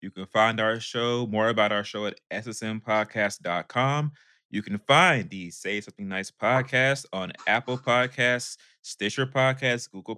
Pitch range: 100-125 Hz